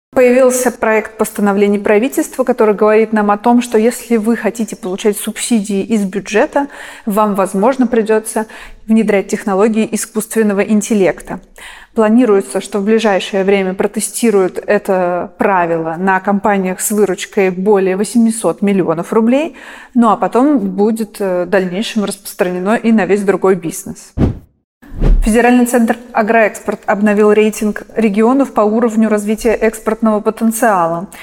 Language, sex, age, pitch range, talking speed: Russian, female, 30-49, 195-230 Hz, 120 wpm